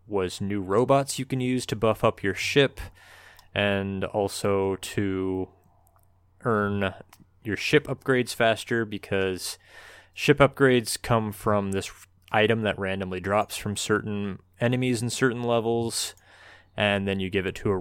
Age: 20-39